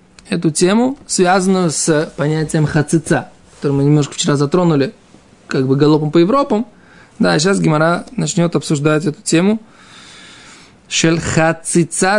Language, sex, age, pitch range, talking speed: Russian, male, 20-39, 150-195 Hz, 130 wpm